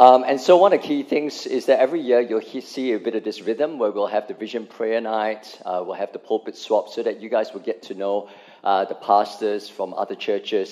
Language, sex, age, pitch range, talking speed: English, male, 50-69, 100-120 Hz, 260 wpm